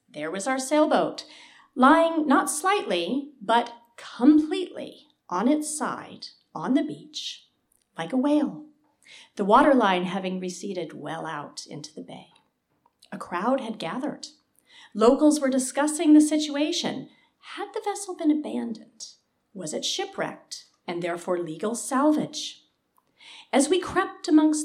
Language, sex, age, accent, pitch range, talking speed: English, female, 40-59, American, 205-295 Hz, 125 wpm